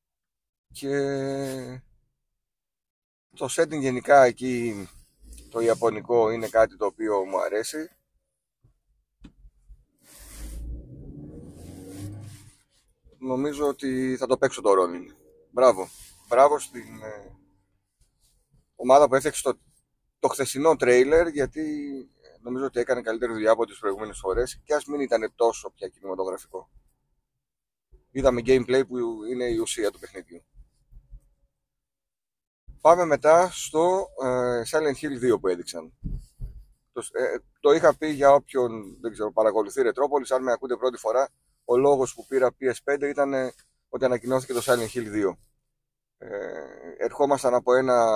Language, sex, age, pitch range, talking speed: Greek, male, 30-49, 115-145 Hz, 120 wpm